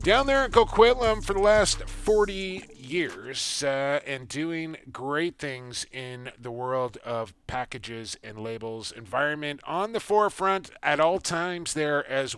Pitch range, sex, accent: 125-170 Hz, male, American